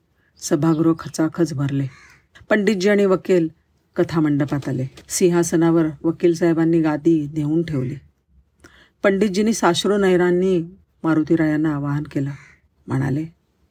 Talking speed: 90 wpm